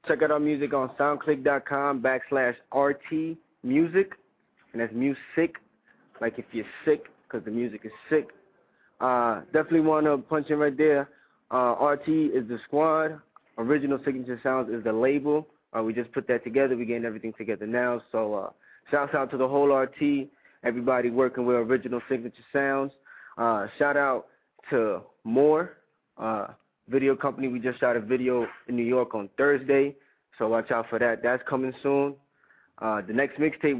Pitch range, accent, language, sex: 125-150 Hz, American, English, male